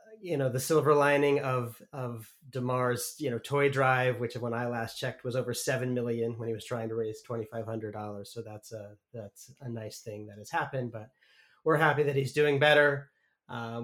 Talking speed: 215 wpm